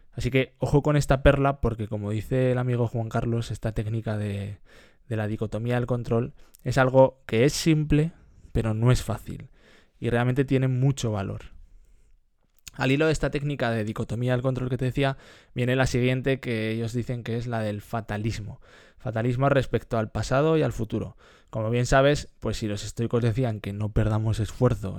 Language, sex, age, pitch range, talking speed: Spanish, male, 20-39, 110-130 Hz, 185 wpm